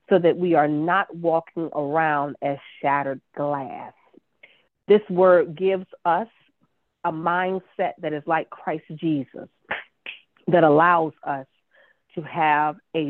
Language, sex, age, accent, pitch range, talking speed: English, female, 40-59, American, 150-190 Hz, 125 wpm